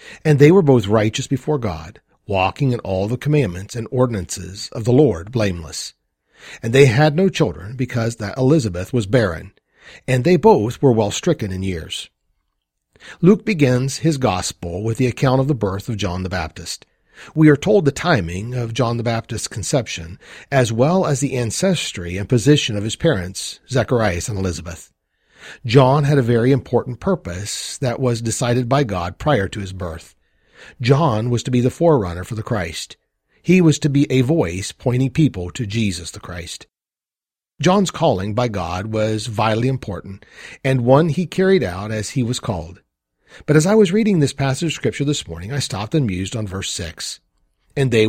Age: 40-59